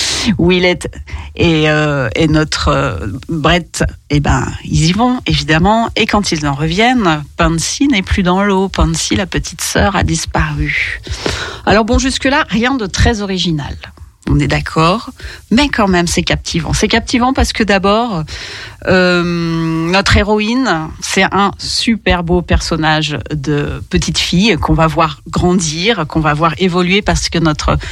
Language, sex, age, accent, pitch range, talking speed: French, female, 40-59, French, 155-190 Hz, 155 wpm